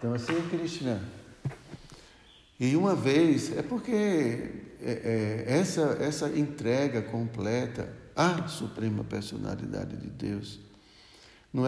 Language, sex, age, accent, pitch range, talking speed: Portuguese, male, 60-79, Brazilian, 110-150 Hz, 100 wpm